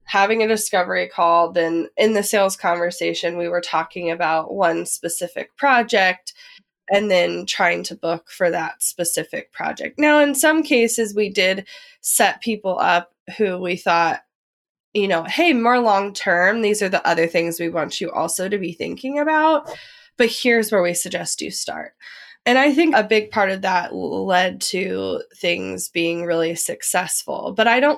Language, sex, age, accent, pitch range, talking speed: English, female, 20-39, American, 175-225 Hz, 170 wpm